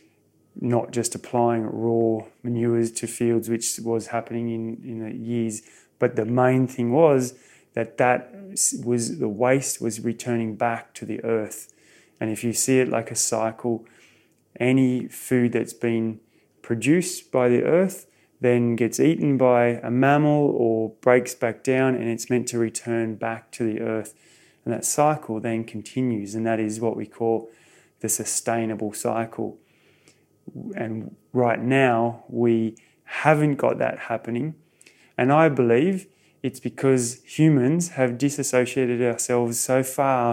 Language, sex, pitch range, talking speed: English, male, 115-125 Hz, 145 wpm